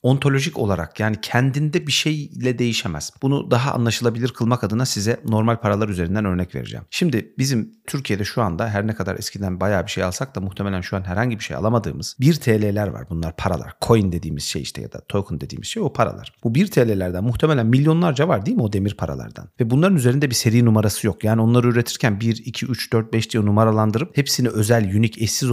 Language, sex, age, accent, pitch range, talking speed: Turkish, male, 40-59, native, 100-130 Hz, 205 wpm